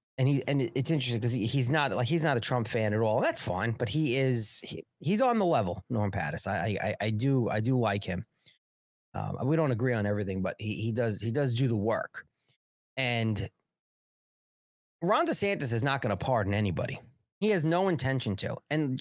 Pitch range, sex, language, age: 110-165 Hz, male, English, 30-49